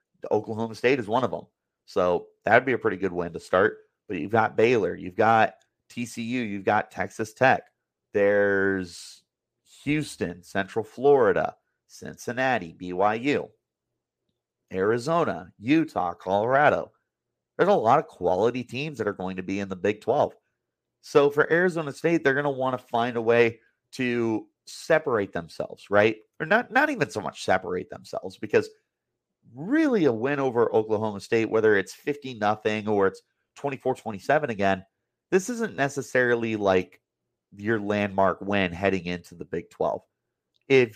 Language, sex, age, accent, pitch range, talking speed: English, male, 30-49, American, 105-145 Hz, 150 wpm